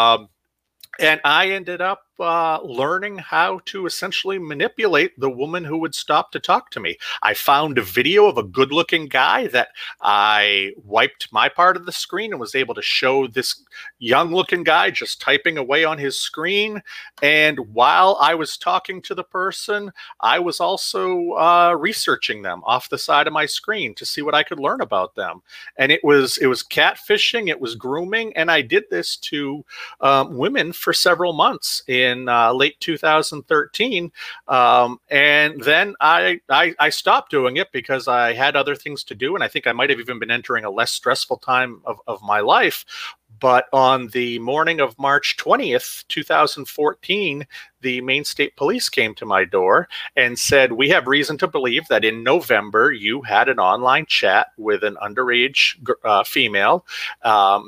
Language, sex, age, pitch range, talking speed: English, male, 40-59, 135-195 Hz, 180 wpm